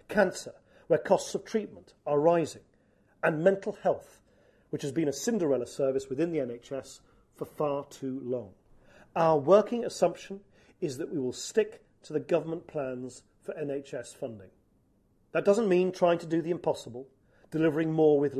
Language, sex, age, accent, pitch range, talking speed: English, male, 40-59, British, 135-185 Hz, 160 wpm